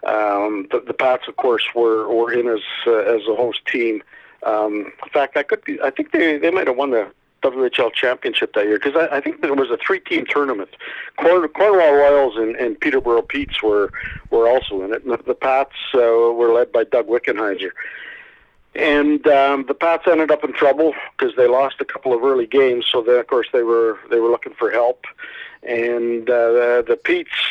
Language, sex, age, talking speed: English, male, 50-69, 210 wpm